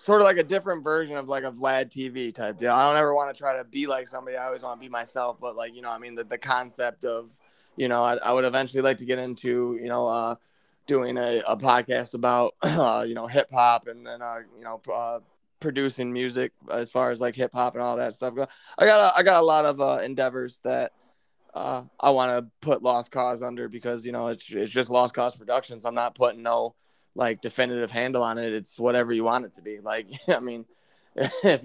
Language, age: English, 20-39